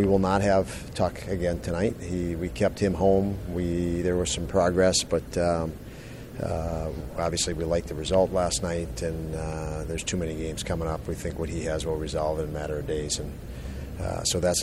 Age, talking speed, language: 40-59, 210 wpm, English